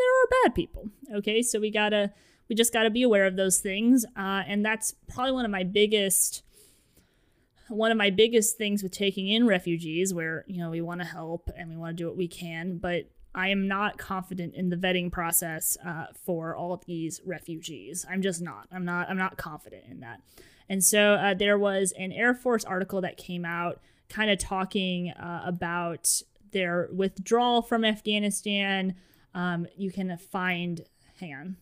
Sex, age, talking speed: female, 20-39, 195 wpm